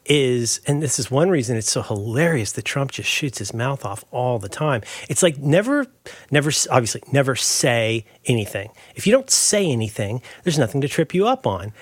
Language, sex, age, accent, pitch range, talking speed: English, male, 40-59, American, 120-175 Hz, 200 wpm